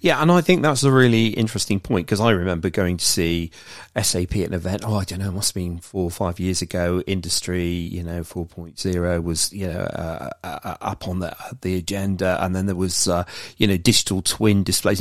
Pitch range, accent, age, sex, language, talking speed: 90-110 Hz, British, 40-59, male, English, 225 wpm